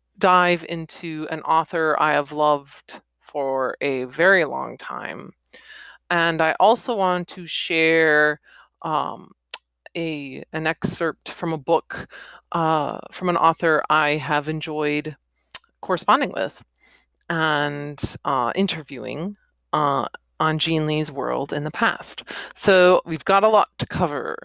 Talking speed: 130 wpm